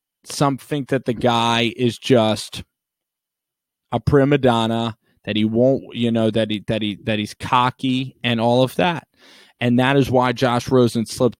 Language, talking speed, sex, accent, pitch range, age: English, 175 wpm, male, American, 110-130 Hz, 20-39